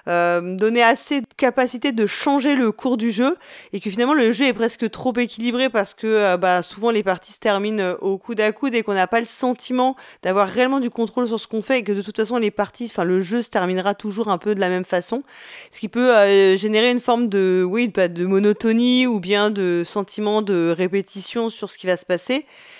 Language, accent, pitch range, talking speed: French, French, 185-235 Hz, 240 wpm